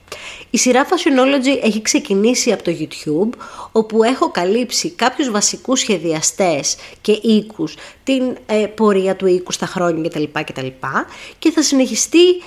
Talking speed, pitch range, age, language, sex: 140 wpm, 190-260 Hz, 20-39, Greek, female